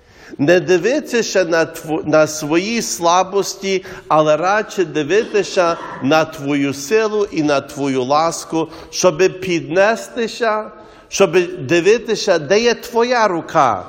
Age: 50-69